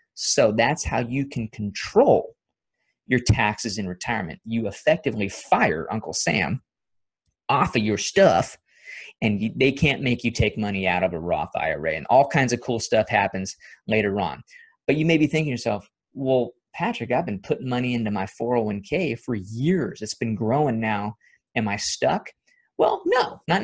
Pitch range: 110-155 Hz